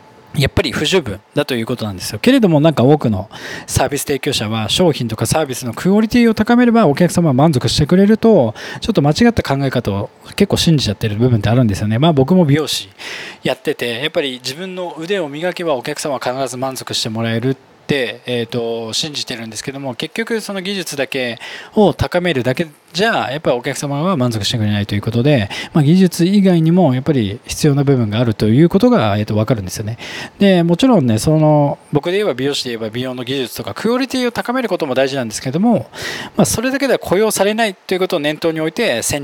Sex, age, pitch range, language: male, 20-39, 125-195 Hz, Japanese